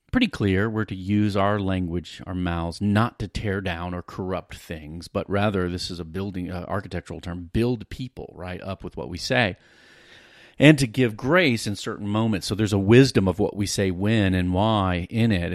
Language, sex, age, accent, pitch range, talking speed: English, male, 40-59, American, 90-105 Hz, 205 wpm